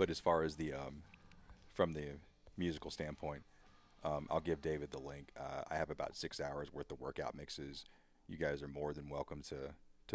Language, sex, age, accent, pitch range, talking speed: English, male, 30-49, American, 70-80 Hz, 200 wpm